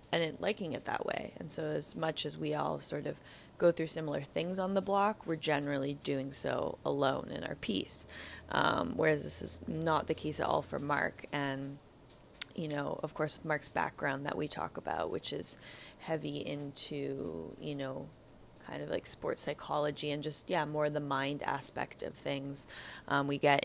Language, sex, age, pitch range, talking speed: English, female, 20-39, 140-150 Hz, 190 wpm